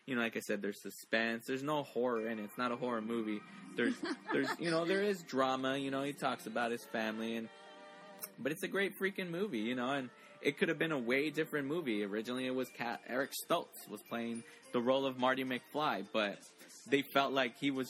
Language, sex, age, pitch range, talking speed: English, male, 20-39, 115-135 Hz, 230 wpm